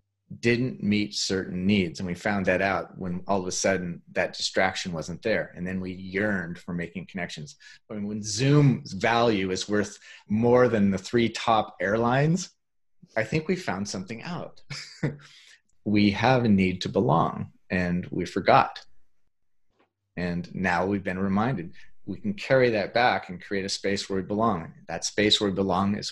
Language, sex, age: English, male, 30-49